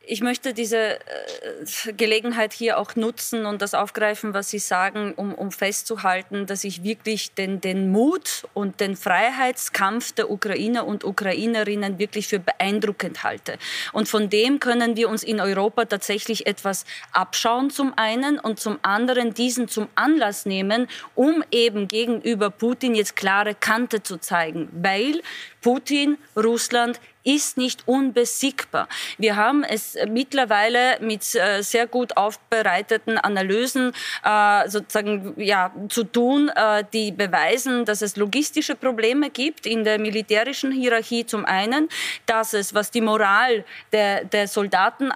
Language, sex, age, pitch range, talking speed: German, female, 20-39, 205-245 Hz, 140 wpm